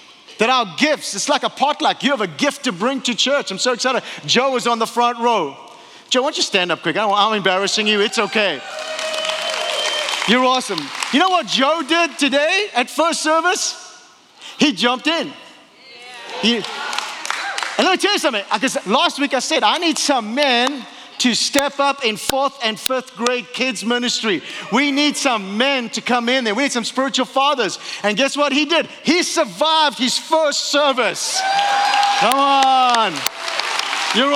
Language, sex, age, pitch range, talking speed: English, male, 40-59, 220-290 Hz, 180 wpm